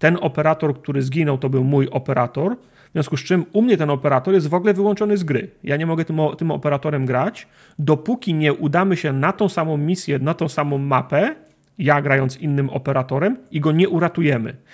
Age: 40-59